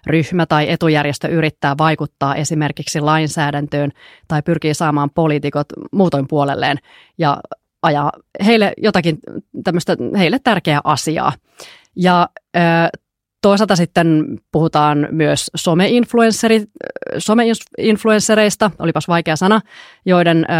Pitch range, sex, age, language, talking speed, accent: 150-180 Hz, female, 30-49, Finnish, 90 wpm, native